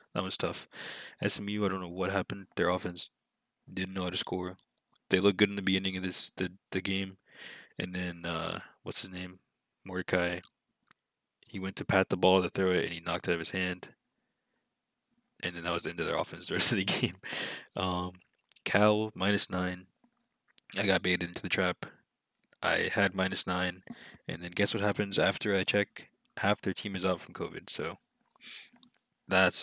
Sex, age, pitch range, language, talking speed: male, 20-39, 90-105 Hz, English, 195 wpm